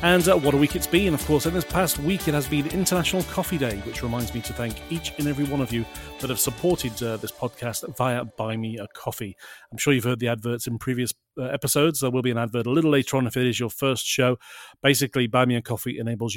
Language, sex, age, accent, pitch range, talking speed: English, male, 40-59, British, 115-145 Hz, 270 wpm